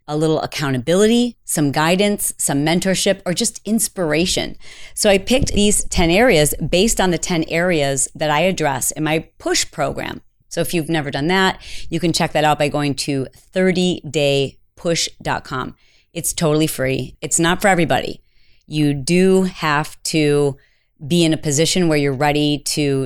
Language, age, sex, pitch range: English, 30-49, female, 150-190 Hz